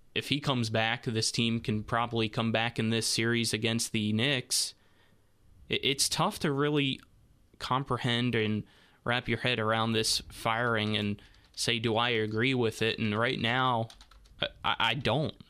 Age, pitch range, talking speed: 20-39, 110-125 Hz, 160 wpm